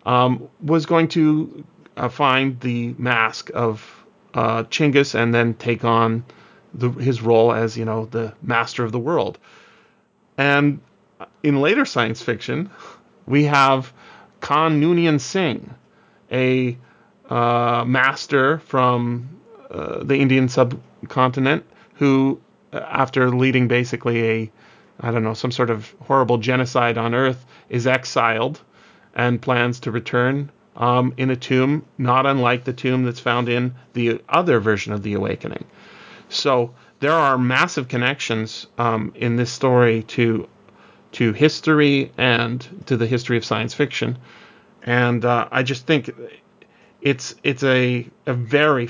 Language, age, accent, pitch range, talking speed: English, 30-49, American, 120-140 Hz, 135 wpm